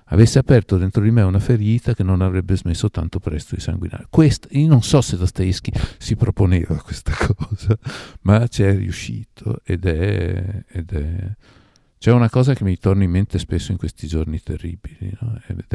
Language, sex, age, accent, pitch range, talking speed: Italian, male, 50-69, native, 85-105 Hz, 180 wpm